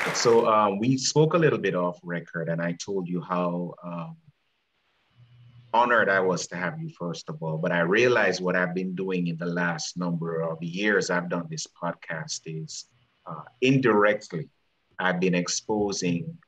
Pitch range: 85-105 Hz